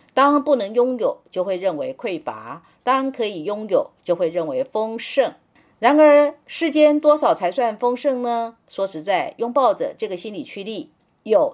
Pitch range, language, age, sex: 215-285 Hz, Chinese, 50-69, female